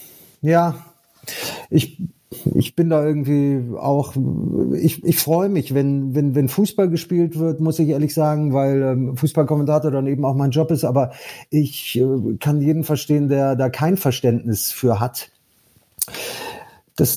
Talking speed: 150 wpm